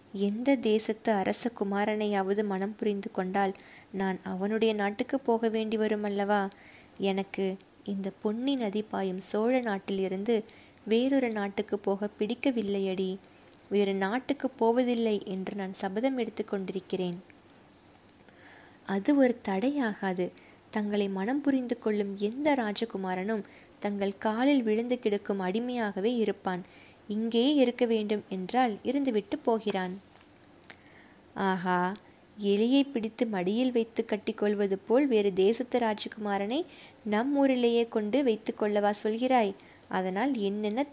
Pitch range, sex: 195-235 Hz, female